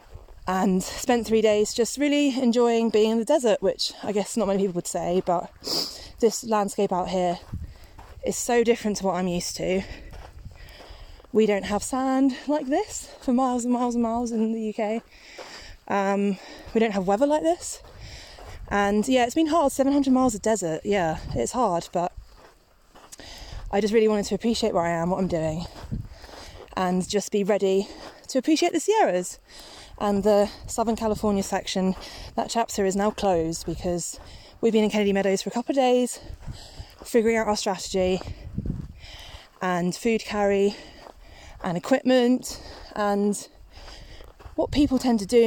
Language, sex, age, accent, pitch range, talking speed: English, female, 20-39, British, 180-230 Hz, 160 wpm